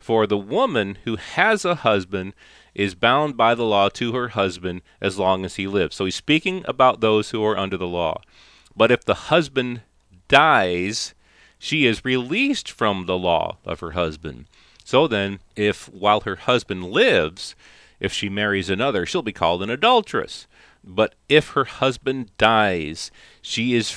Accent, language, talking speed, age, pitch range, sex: American, English, 170 wpm, 40-59, 90-120 Hz, male